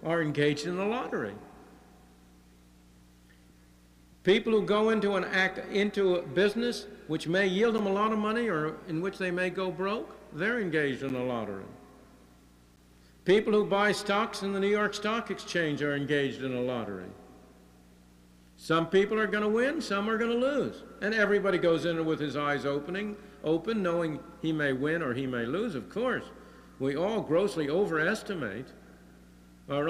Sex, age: male, 60-79